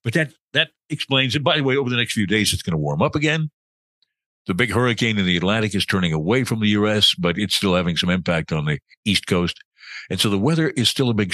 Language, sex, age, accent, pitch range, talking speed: English, male, 60-79, American, 95-125 Hz, 260 wpm